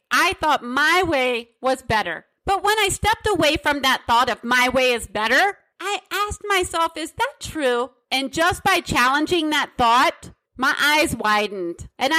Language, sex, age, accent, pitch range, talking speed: English, female, 40-59, American, 275-380 Hz, 170 wpm